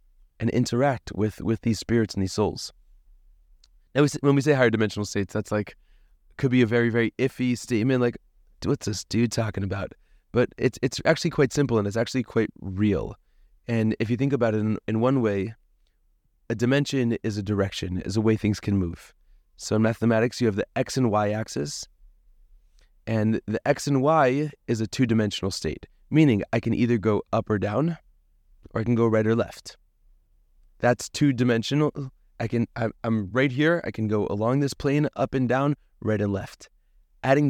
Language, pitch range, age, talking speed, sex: English, 105-130 Hz, 20-39, 190 wpm, male